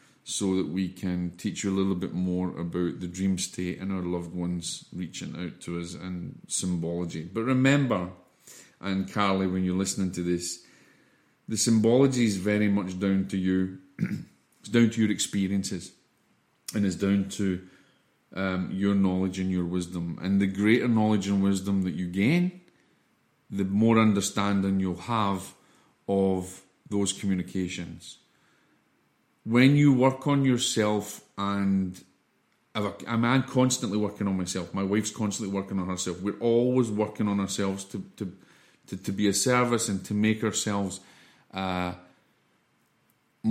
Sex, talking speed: male, 150 wpm